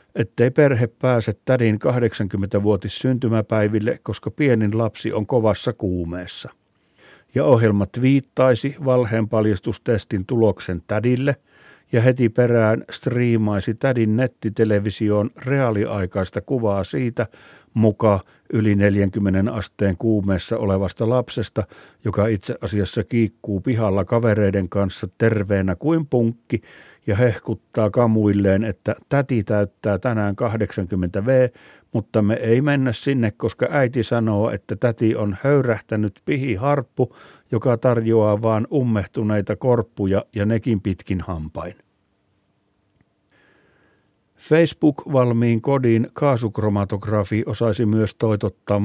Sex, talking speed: male, 100 wpm